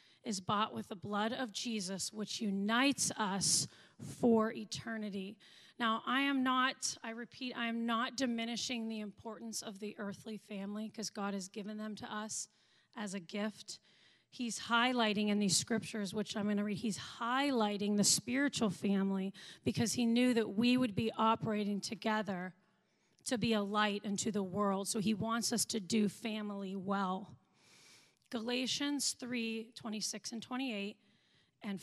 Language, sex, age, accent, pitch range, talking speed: English, female, 30-49, American, 200-230 Hz, 155 wpm